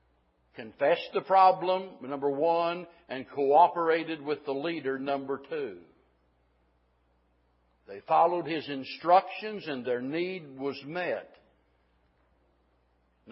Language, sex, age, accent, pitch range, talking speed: English, male, 60-79, American, 140-195 Hz, 100 wpm